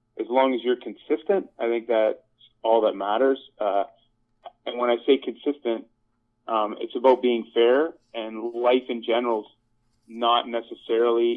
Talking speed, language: 150 wpm, English